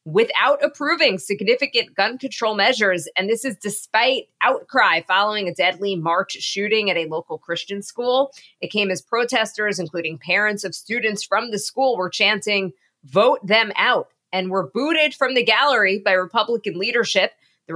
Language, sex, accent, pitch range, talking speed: English, female, American, 180-220 Hz, 160 wpm